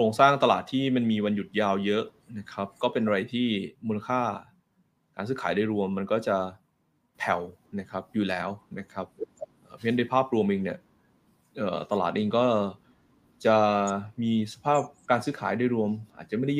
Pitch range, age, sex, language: 100-125 Hz, 20-39, male, Thai